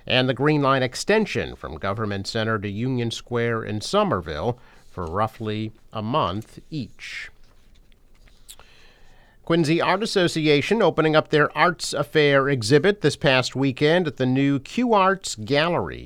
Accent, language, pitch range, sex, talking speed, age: American, English, 115-150 Hz, male, 135 wpm, 50-69